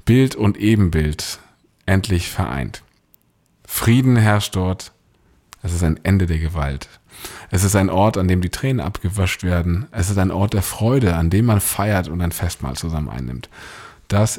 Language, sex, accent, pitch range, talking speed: German, male, German, 95-120 Hz, 165 wpm